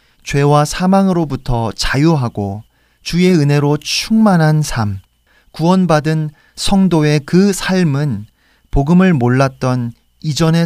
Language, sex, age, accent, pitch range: Korean, male, 40-59, native, 115-160 Hz